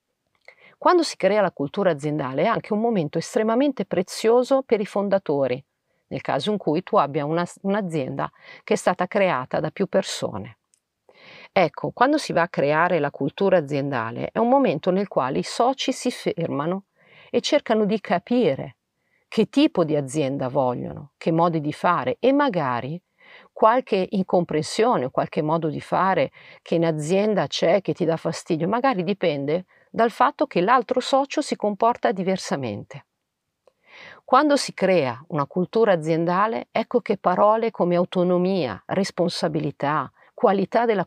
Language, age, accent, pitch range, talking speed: Italian, 50-69, native, 160-225 Hz, 150 wpm